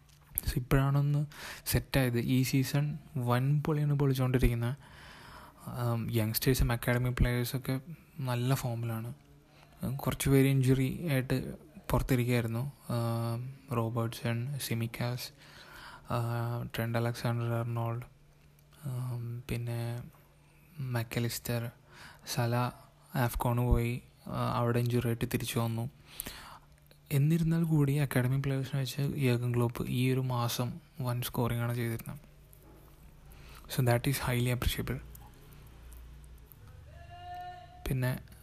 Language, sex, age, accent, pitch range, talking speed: Malayalam, male, 20-39, native, 120-135 Hz, 75 wpm